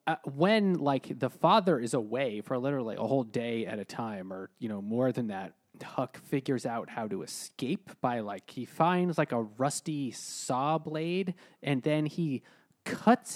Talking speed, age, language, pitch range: 180 wpm, 20-39, English, 125-165 Hz